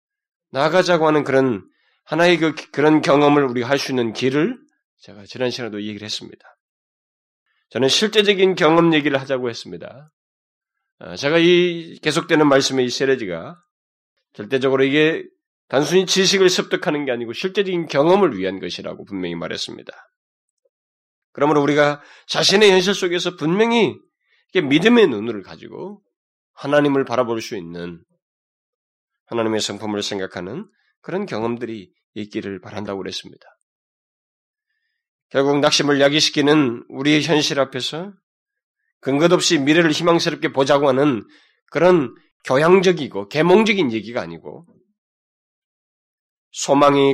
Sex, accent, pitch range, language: male, native, 130-195 Hz, Korean